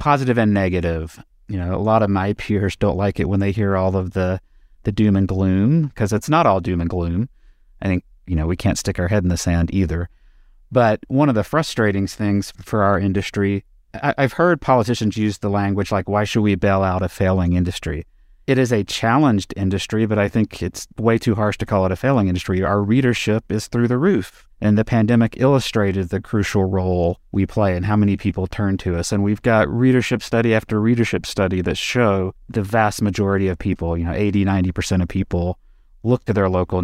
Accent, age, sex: American, 30-49, male